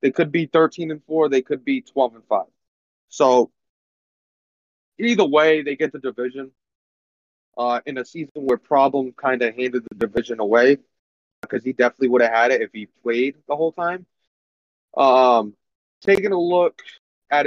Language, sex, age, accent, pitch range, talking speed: English, male, 30-49, American, 110-145 Hz, 170 wpm